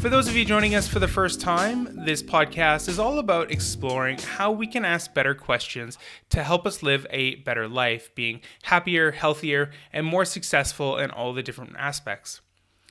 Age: 20-39